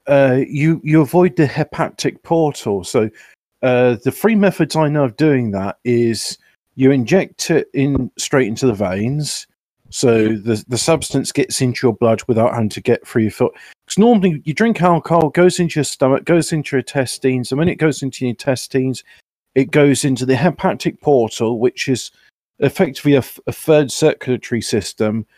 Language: English